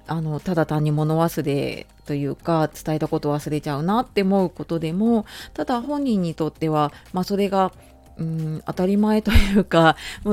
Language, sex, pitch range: Japanese, female, 155-210 Hz